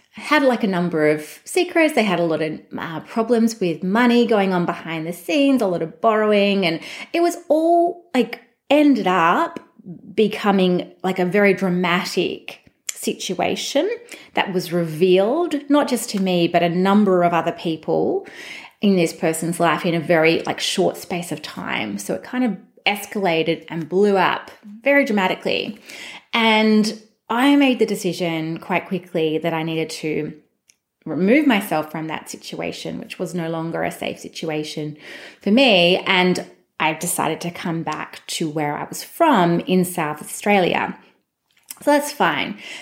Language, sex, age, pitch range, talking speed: English, female, 30-49, 170-235 Hz, 160 wpm